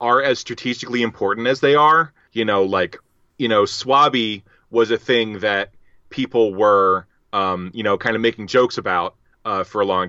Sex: male